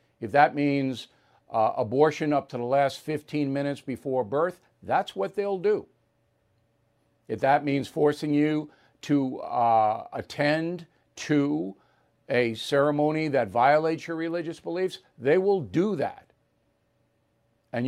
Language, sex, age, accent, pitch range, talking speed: English, male, 50-69, American, 115-160 Hz, 130 wpm